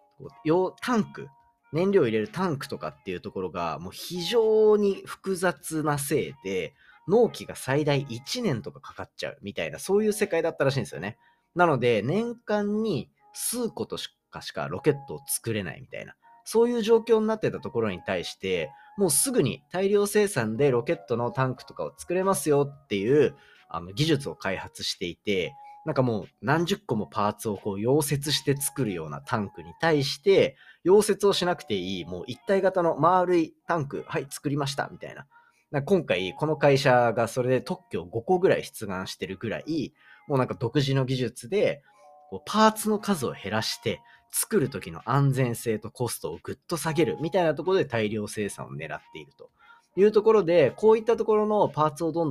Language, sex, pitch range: Japanese, male, 130-205 Hz